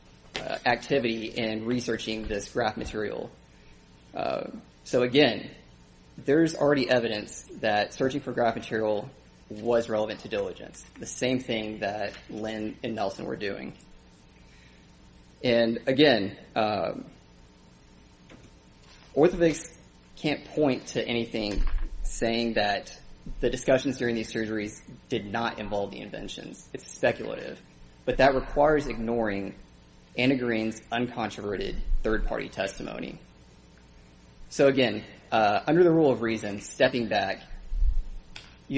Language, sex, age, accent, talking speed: English, male, 30-49, American, 115 wpm